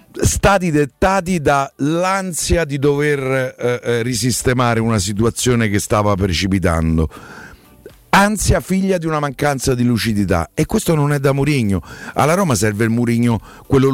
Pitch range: 105-140 Hz